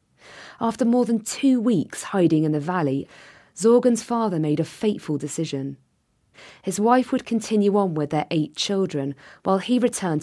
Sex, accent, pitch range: female, British, 145-215 Hz